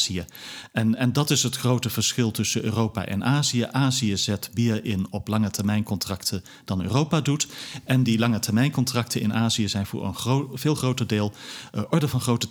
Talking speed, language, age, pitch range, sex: 190 wpm, Dutch, 40-59, 105-135 Hz, male